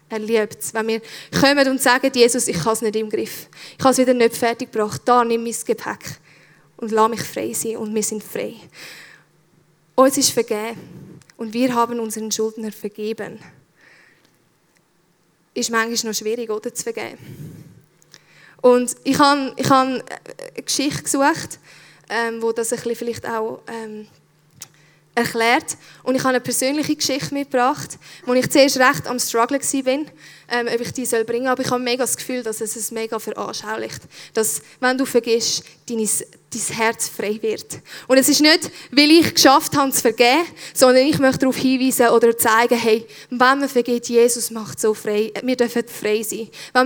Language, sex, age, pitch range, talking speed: German, female, 10-29, 220-255 Hz, 175 wpm